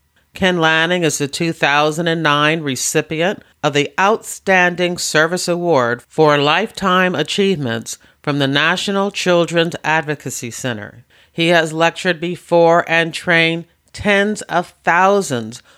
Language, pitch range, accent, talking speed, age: English, 145-180 Hz, American, 110 wpm, 40-59